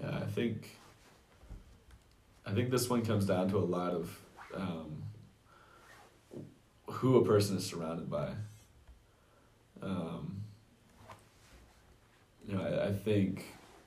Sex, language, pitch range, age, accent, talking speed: male, English, 90-105 Hz, 20-39, American, 110 wpm